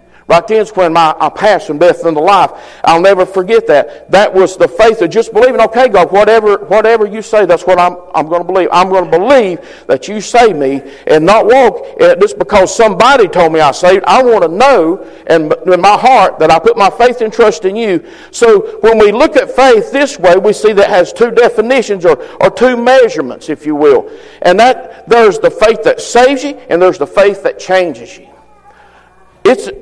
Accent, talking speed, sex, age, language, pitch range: American, 215 wpm, male, 50-69, English, 180-260 Hz